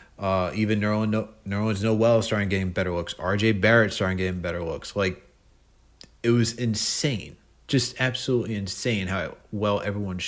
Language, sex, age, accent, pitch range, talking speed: English, male, 30-49, American, 95-115 Hz, 150 wpm